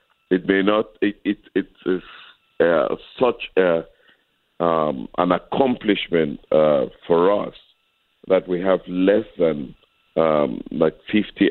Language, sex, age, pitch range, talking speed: English, male, 50-69, 80-100 Hz, 125 wpm